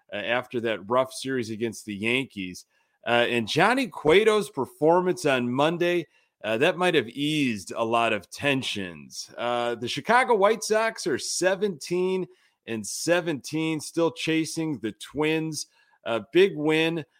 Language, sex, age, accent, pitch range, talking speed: English, male, 30-49, American, 115-160 Hz, 140 wpm